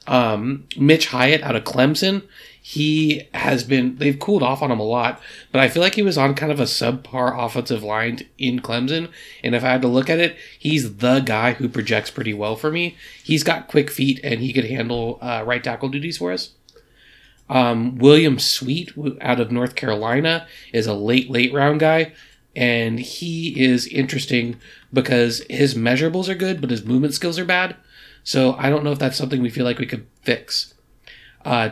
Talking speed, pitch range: 195 wpm, 120-145 Hz